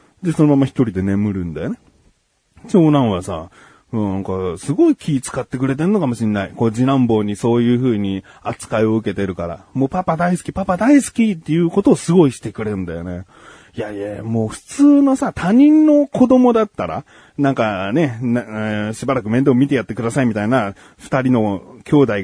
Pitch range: 110-185 Hz